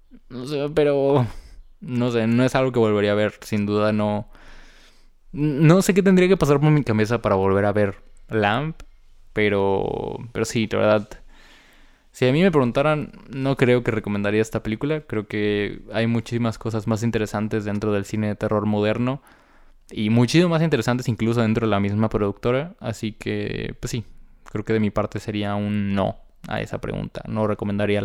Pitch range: 105-145 Hz